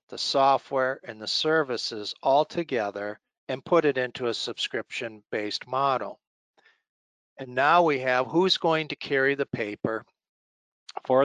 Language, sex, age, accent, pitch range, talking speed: English, male, 60-79, American, 120-145 Hz, 135 wpm